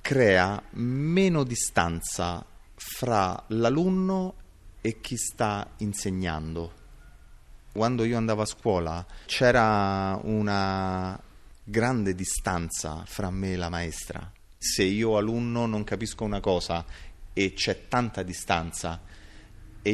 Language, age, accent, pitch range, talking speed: Italian, 30-49, native, 90-115 Hz, 105 wpm